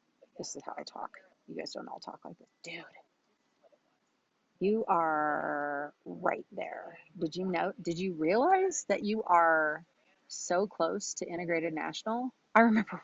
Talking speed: 150 wpm